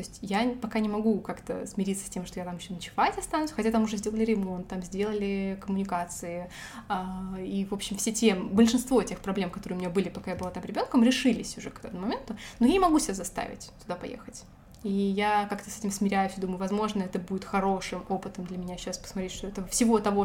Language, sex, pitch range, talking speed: Russian, female, 190-230 Hz, 220 wpm